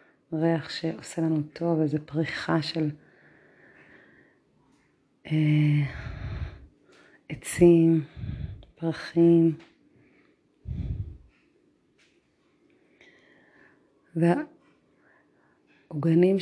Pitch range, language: 160-180 Hz, Hebrew